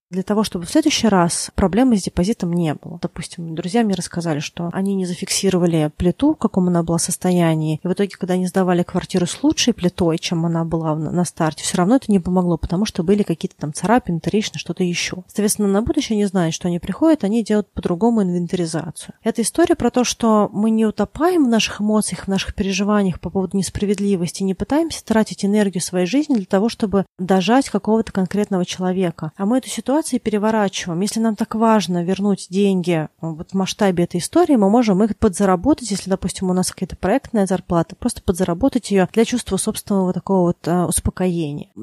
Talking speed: 190 wpm